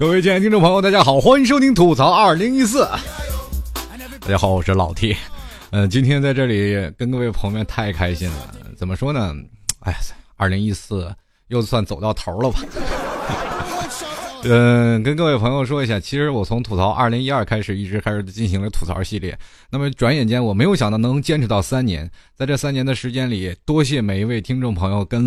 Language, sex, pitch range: Chinese, male, 95-140 Hz